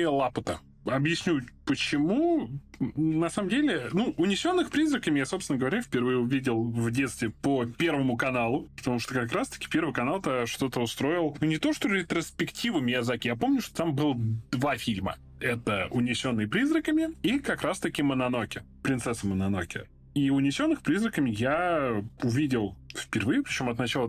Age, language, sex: 20-39, Russian, male